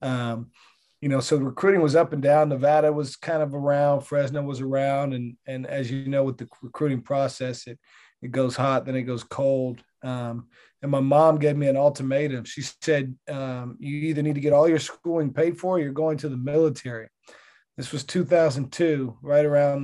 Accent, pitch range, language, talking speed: American, 125-145 Hz, English, 205 wpm